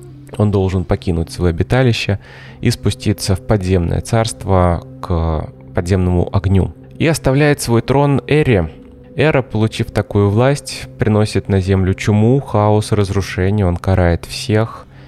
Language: Russian